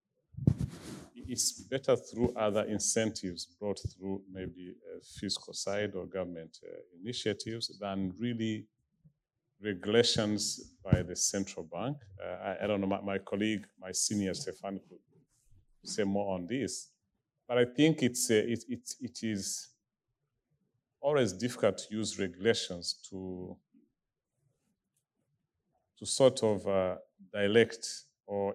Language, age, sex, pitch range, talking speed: English, 40-59, male, 95-115 Hz, 125 wpm